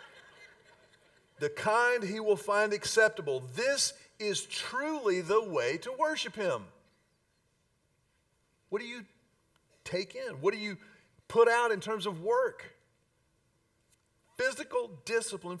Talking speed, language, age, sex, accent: 115 wpm, English, 40-59, male, American